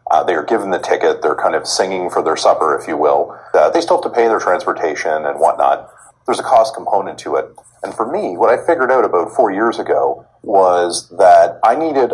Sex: male